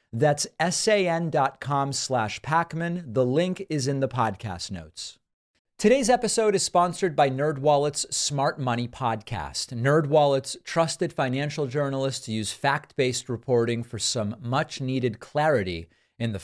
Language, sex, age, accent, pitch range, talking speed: English, male, 40-59, American, 120-165 Hz, 135 wpm